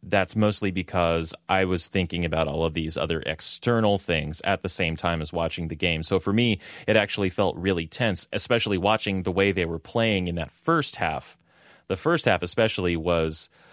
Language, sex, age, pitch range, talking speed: English, male, 30-49, 90-115 Hz, 195 wpm